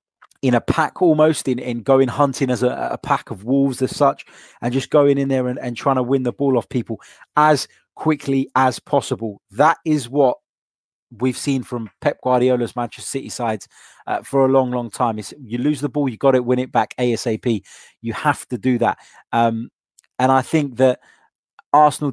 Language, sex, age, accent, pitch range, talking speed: English, male, 20-39, British, 120-140 Hz, 200 wpm